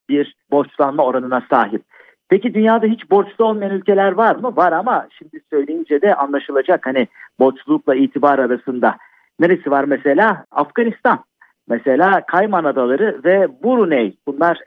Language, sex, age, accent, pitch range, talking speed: Turkish, male, 50-69, native, 140-205 Hz, 130 wpm